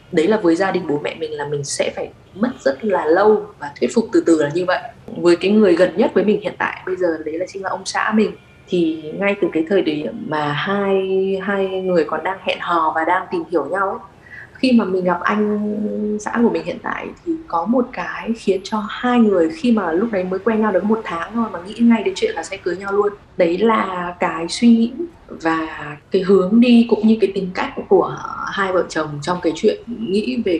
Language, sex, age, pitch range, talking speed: Vietnamese, female, 20-39, 170-215 Hz, 240 wpm